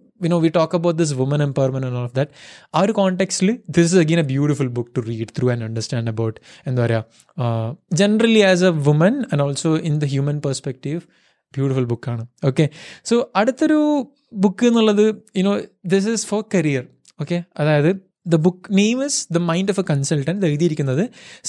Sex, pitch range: male, 140-185 Hz